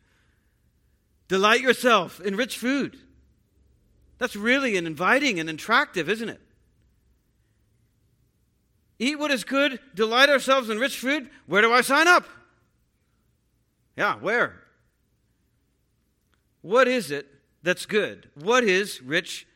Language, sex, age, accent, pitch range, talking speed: English, male, 50-69, American, 140-215 Hz, 115 wpm